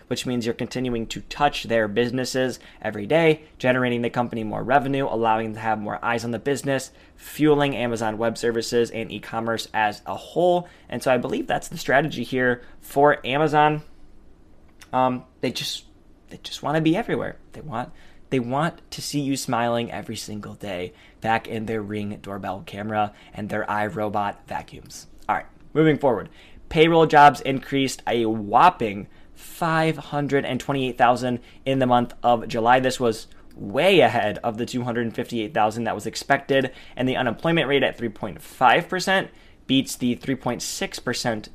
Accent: American